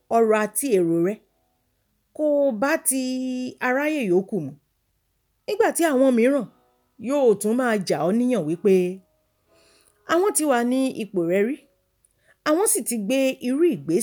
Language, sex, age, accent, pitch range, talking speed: English, female, 40-59, Nigerian, 180-295 Hz, 120 wpm